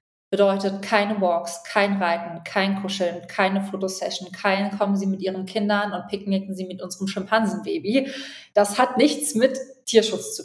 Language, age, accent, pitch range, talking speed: German, 30-49, German, 185-220 Hz, 155 wpm